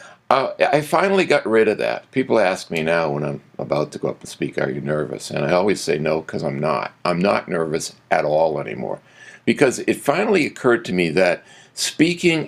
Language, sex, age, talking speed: English, male, 50-69, 210 wpm